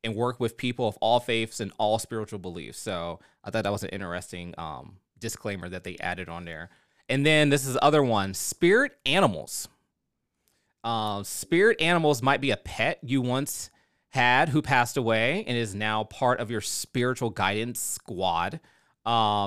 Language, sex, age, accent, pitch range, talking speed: English, male, 30-49, American, 105-135 Hz, 175 wpm